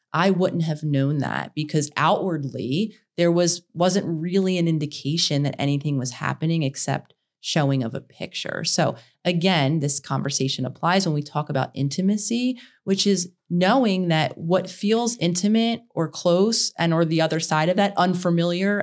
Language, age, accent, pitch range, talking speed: English, 30-49, American, 155-190 Hz, 155 wpm